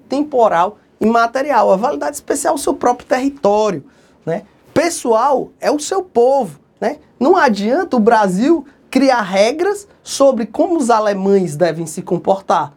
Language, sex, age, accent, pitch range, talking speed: English, male, 20-39, Brazilian, 205-280 Hz, 140 wpm